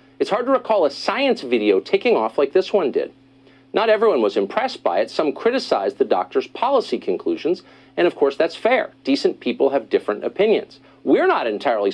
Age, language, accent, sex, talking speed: 50-69, English, American, male, 190 wpm